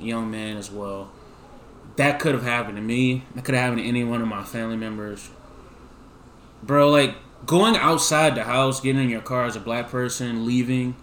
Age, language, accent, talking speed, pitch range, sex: 20-39, English, American, 195 wpm, 115-150 Hz, male